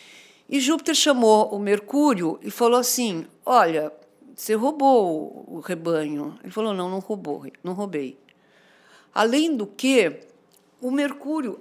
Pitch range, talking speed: 190-275 Hz, 125 wpm